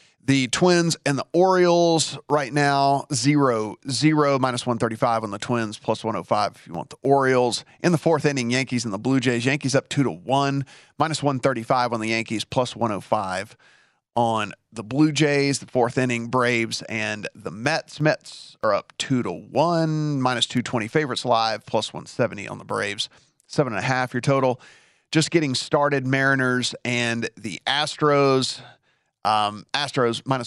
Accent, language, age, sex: American, English, 40-59, male